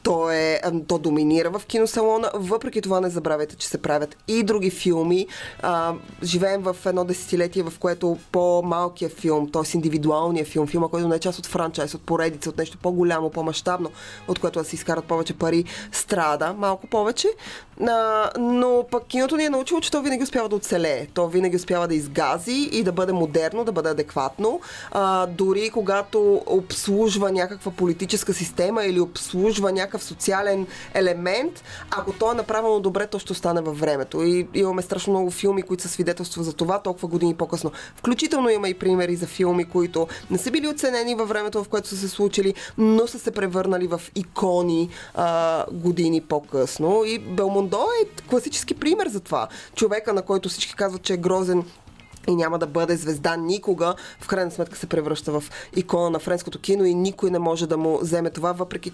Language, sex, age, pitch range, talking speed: Bulgarian, female, 20-39, 170-205 Hz, 180 wpm